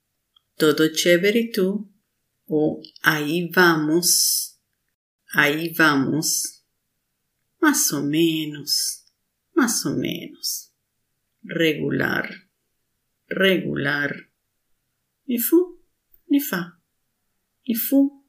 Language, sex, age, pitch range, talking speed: Spanish, female, 50-69, 165-230 Hz, 70 wpm